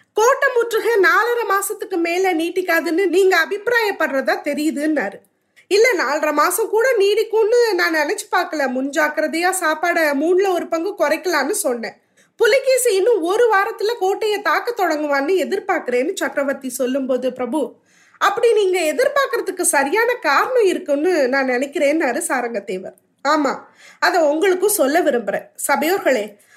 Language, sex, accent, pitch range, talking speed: Tamil, female, native, 295-400 Hz, 55 wpm